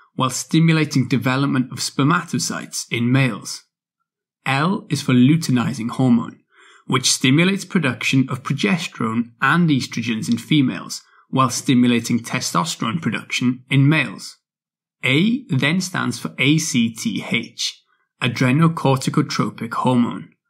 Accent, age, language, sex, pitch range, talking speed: British, 20-39, English, male, 125-165 Hz, 100 wpm